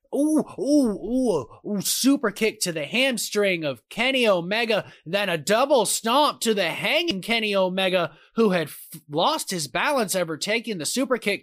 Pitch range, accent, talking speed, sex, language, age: 165-225 Hz, American, 165 wpm, male, English, 20-39